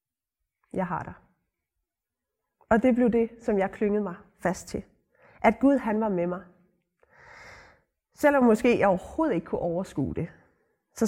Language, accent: Danish, native